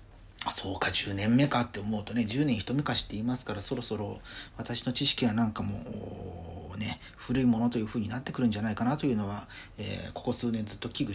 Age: 40-59